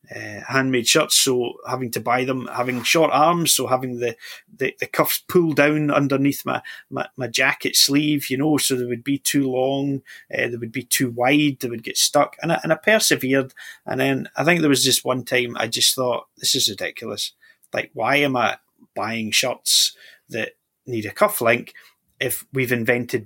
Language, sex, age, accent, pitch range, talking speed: English, male, 30-49, British, 115-145 Hz, 200 wpm